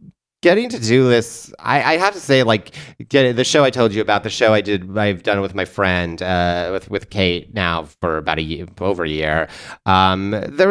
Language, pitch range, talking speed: English, 95-125 Hz, 230 wpm